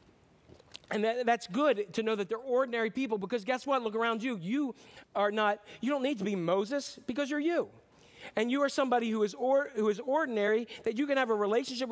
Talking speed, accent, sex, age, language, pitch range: 205 wpm, American, male, 40-59, English, 190-240 Hz